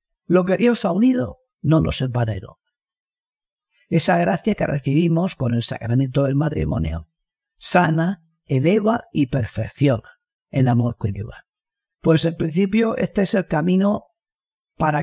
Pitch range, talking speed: 120-180 Hz, 135 wpm